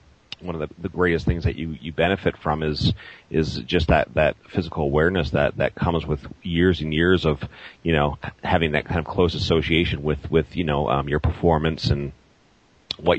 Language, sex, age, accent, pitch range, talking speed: English, male, 30-49, American, 75-90 Hz, 195 wpm